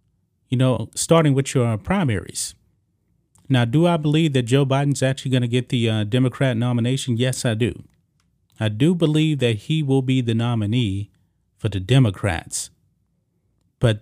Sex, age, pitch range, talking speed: male, 30-49, 110-140 Hz, 160 wpm